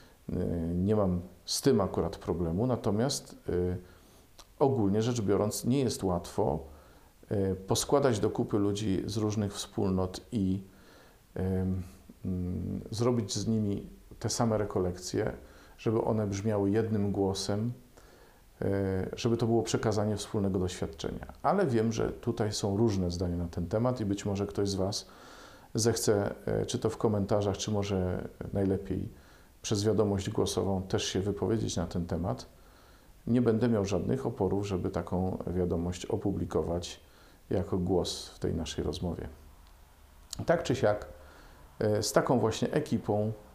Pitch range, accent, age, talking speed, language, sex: 90-110 Hz, native, 40-59, 130 wpm, Polish, male